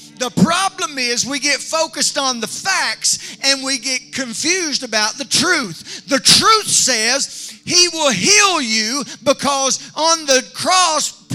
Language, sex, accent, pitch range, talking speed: English, male, American, 245-310 Hz, 145 wpm